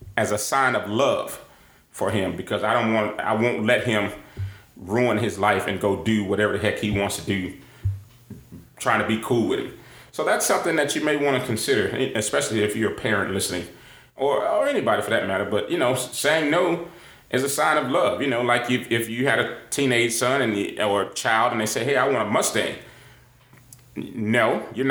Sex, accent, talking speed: male, American, 215 wpm